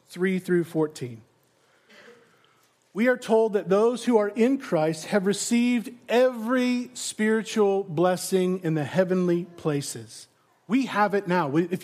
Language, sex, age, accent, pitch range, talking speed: English, male, 40-59, American, 185-255 Hz, 130 wpm